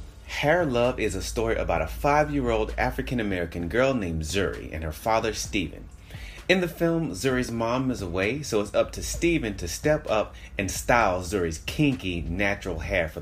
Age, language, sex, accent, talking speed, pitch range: 30-49, English, male, American, 170 wpm, 85-125 Hz